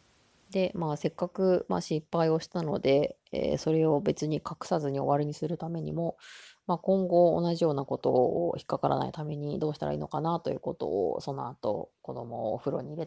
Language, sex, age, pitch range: Japanese, female, 20-39, 140-185 Hz